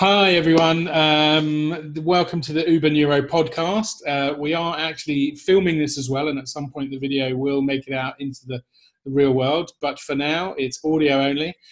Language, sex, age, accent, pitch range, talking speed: English, male, 30-49, British, 130-155 Hz, 195 wpm